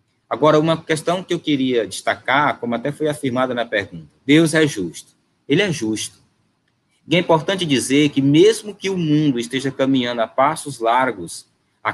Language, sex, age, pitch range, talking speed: Portuguese, male, 20-39, 120-155 Hz, 170 wpm